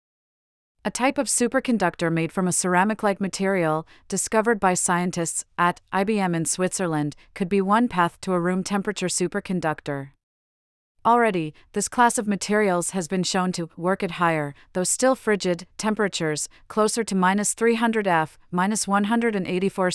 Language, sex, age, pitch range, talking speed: English, female, 30-49, 170-205 Hz, 140 wpm